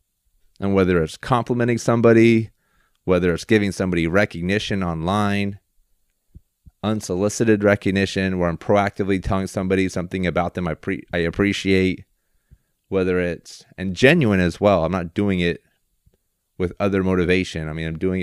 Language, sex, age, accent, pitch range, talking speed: English, male, 30-49, American, 85-100 Hz, 140 wpm